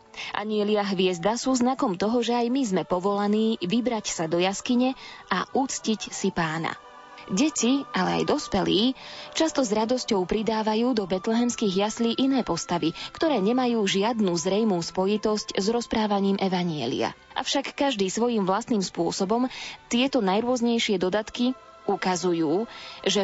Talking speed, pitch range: 125 wpm, 195-245 Hz